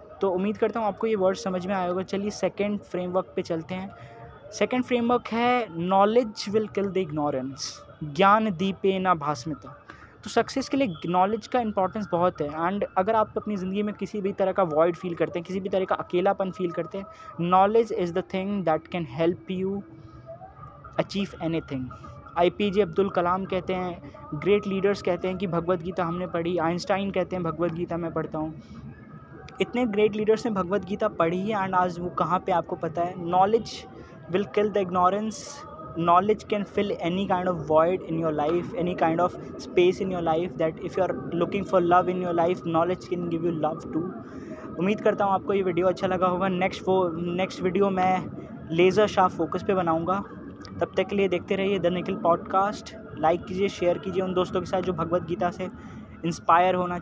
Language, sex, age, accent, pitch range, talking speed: Hindi, male, 20-39, native, 170-195 Hz, 195 wpm